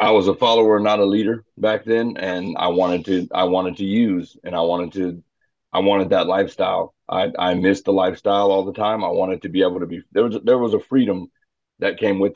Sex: male